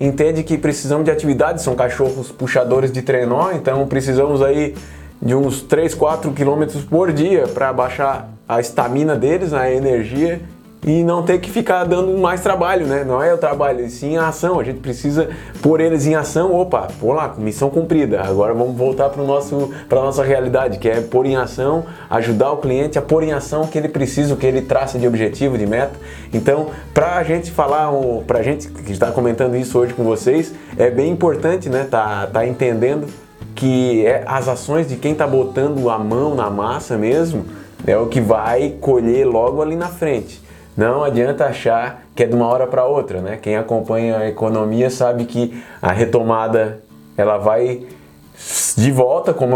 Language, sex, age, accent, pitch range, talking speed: Portuguese, male, 20-39, Brazilian, 115-150 Hz, 185 wpm